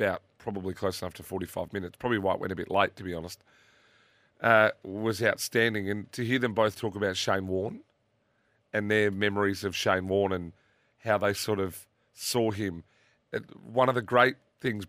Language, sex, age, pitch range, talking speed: English, male, 30-49, 95-125 Hz, 190 wpm